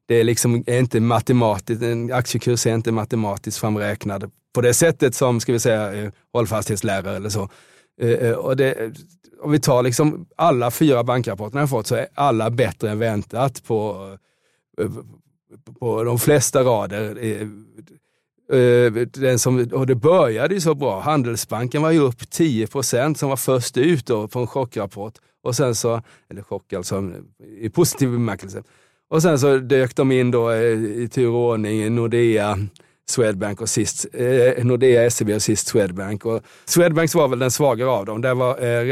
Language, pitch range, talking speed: Swedish, 110-130 Hz, 160 wpm